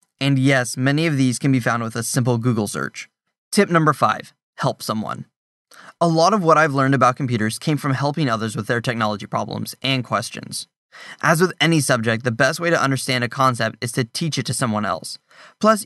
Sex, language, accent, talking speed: male, English, American, 210 wpm